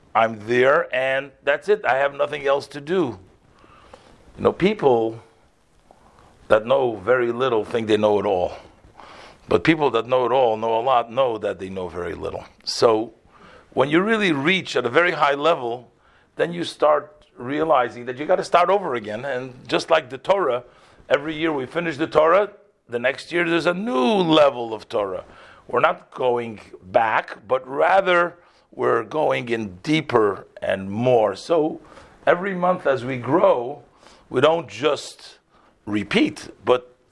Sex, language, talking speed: male, English, 165 wpm